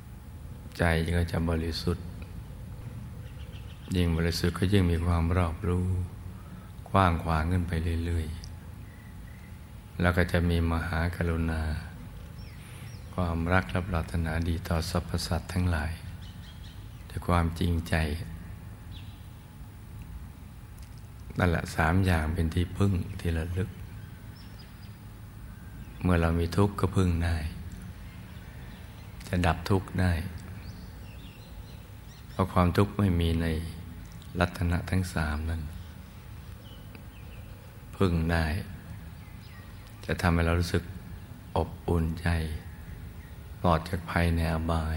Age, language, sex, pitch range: 60-79, Thai, male, 85-95 Hz